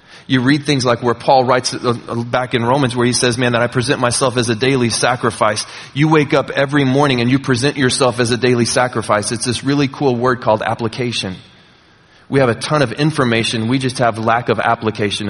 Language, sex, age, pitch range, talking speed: English, male, 30-49, 120-145 Hz, 210 wpm